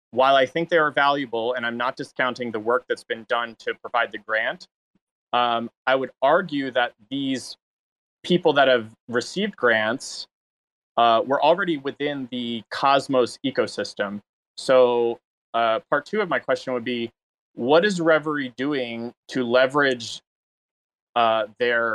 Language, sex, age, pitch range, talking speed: English, male, 20-39, 115-135 Hz, 150 wpm